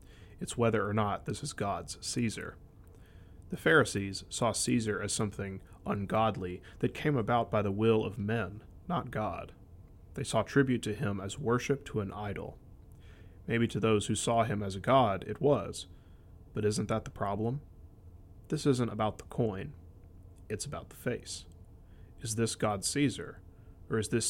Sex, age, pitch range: male, 30-49, 90-115 Hz